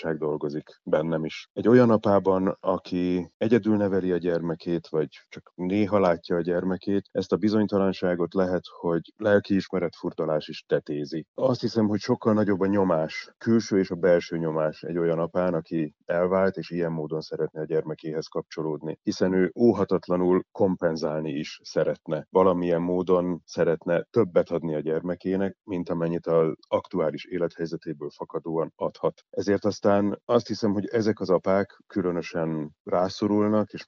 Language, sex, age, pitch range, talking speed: Hungarian, male, 30-49, 80-95 Hz, 140 wpm